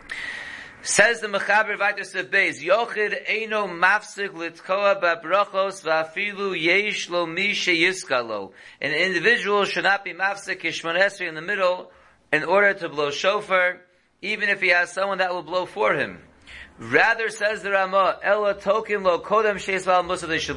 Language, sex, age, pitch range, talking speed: English, male, 40-59, 170-200 Hz, 150 wpm